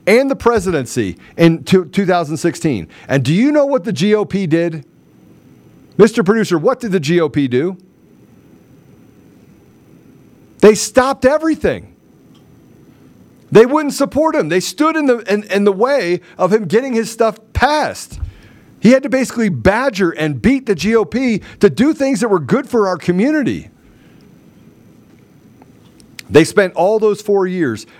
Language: English